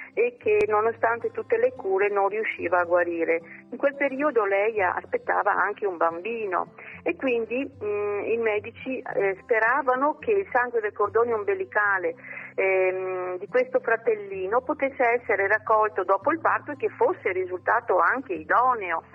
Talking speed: 145 wpm